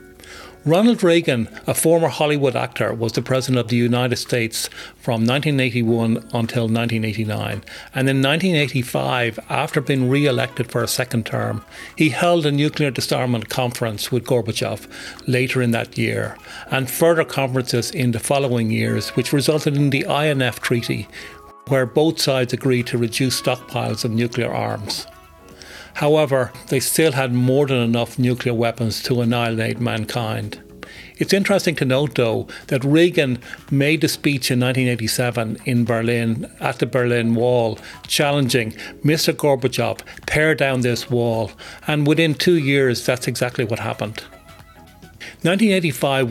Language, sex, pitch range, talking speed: English, male, 115-140 Hz, 140 wpm